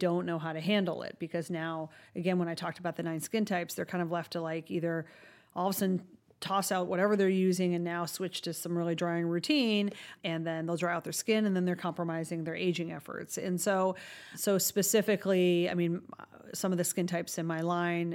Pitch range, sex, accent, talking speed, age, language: 170-195 Hz, female, American, 230 wpm, 40-59, English